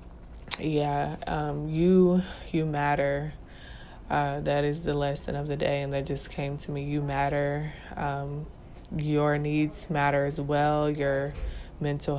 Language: English